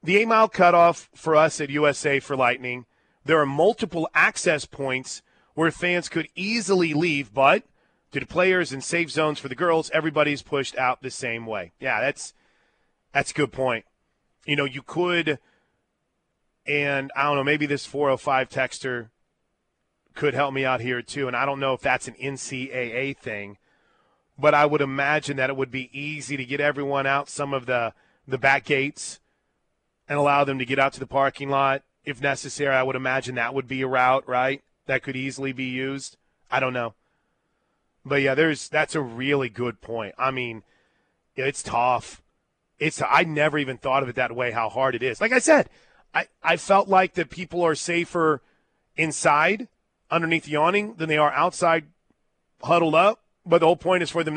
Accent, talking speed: American, 185 wpm